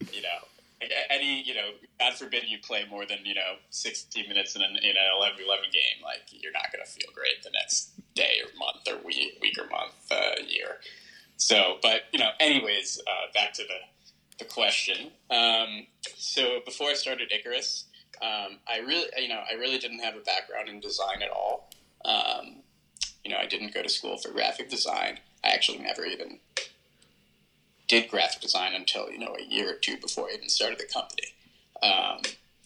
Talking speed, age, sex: 190 wpm, 20-39, male